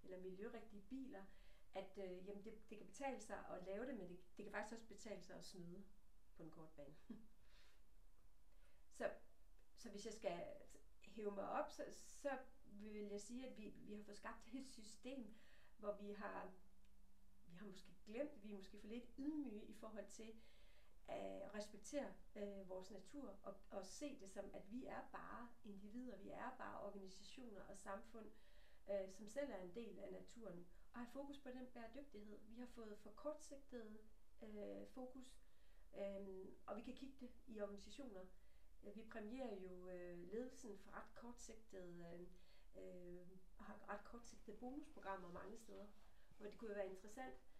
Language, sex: Danish, female